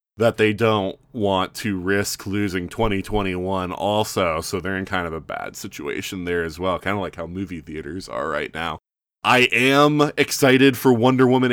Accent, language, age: American, English, 20-39